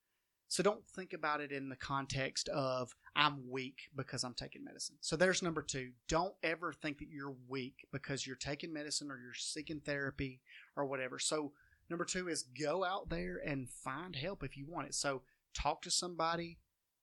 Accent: American